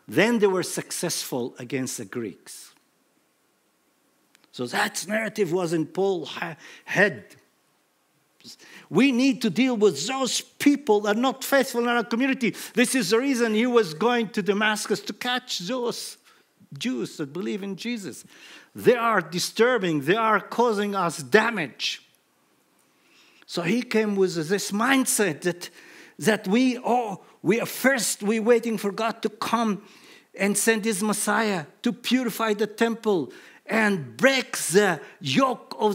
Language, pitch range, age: English, 175-235 Hz, 50-69